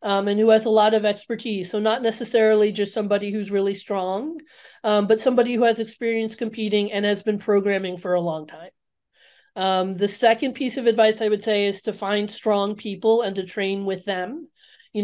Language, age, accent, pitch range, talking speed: English, 30-49, American, 200-230 Hz, 205 wpm